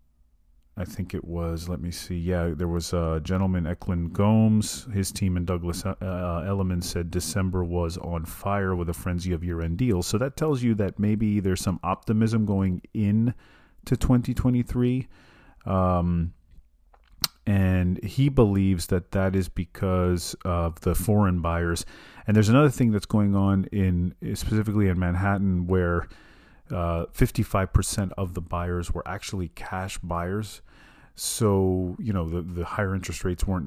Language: English